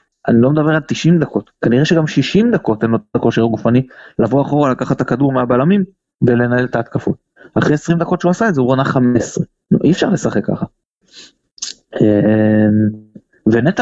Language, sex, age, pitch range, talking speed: Hebrew, male, 30-49, 115-170 Hz, 175 wpm